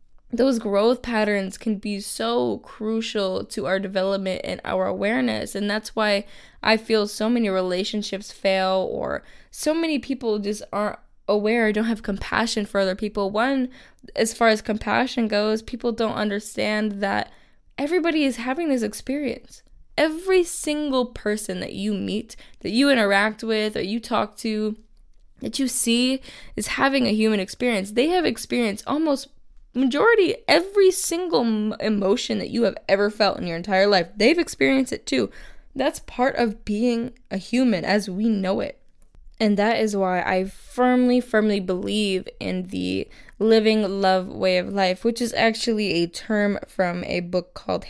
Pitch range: 195-240 Hz